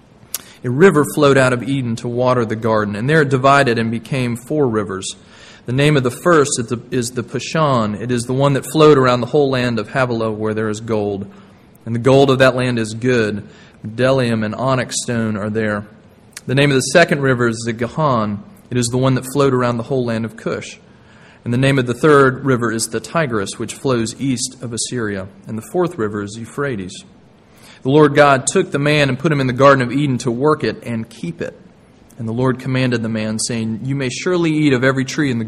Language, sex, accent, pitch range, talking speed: English, male, American, 115-140 Hz, 225 wpm